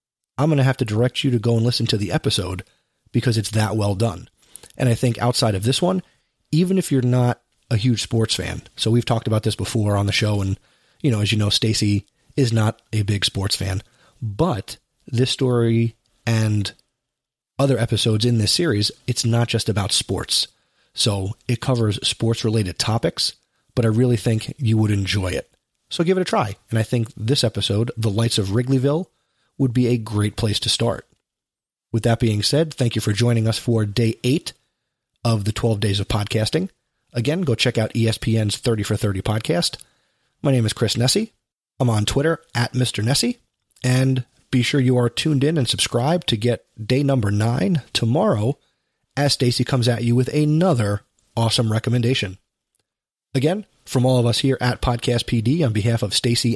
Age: 30-49